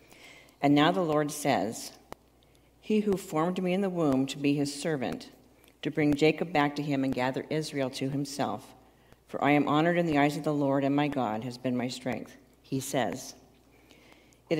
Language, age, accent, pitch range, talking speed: English, 50-69, American, 130-160 Hz, 195 wpm